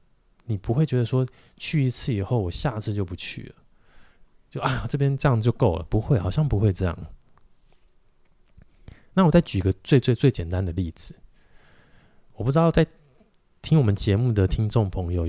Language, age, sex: Chinese, 20-39, male